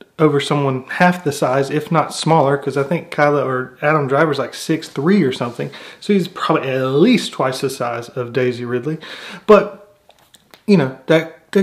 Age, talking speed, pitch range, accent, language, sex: 30-49, 180 wpm, 140-180 Hz, American, English, male